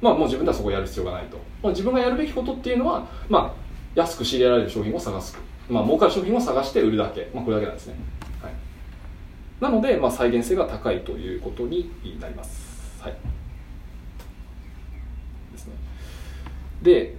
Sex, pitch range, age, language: male, 80-125 Hz, 20-39, Japanese